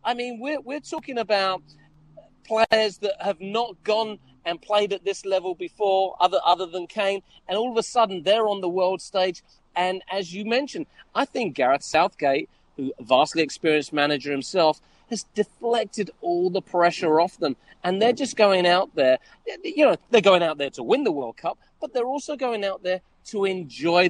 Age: 40-59